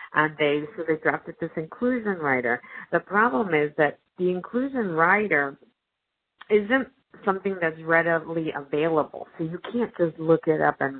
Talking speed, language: 155 wpm, English